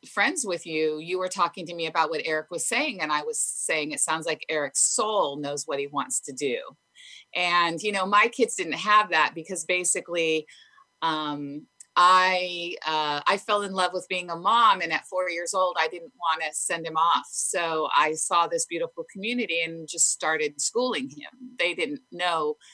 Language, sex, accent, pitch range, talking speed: English, female, American, 160-195 Hz, 200 wpm